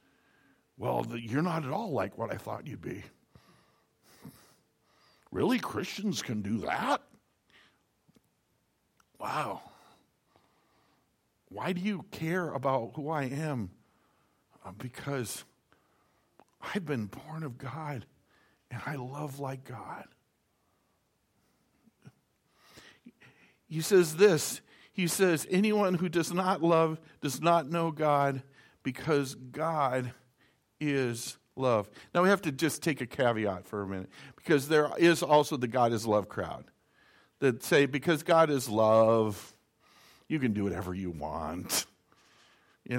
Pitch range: 125-160 Hz